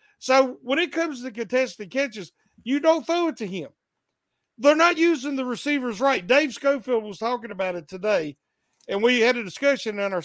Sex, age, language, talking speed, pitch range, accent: male, 50-69, English, 195 wpm, 235-310 Hz, American